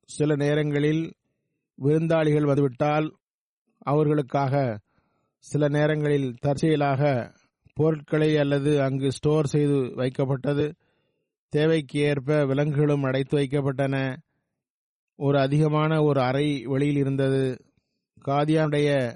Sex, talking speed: male, 80 wpm